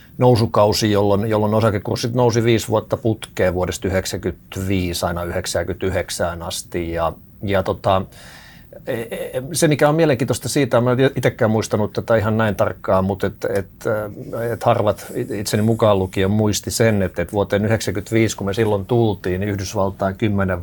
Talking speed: 145 wpm